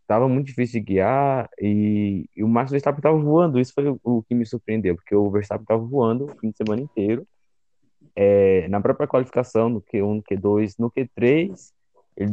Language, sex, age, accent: Portuguese, male, 20-39, Brazilian